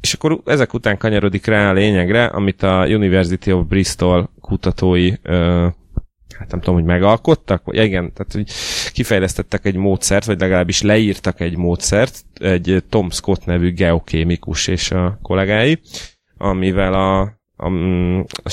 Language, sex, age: Hungarian, male, 30-49